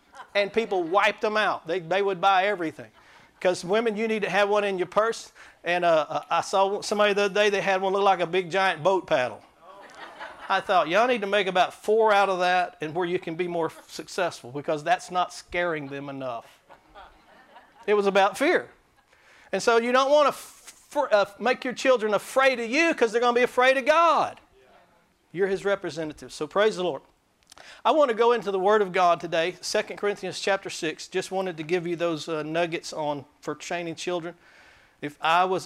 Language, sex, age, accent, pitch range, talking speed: English, male, 50-69, American, 160-205 Hz, 205 wpm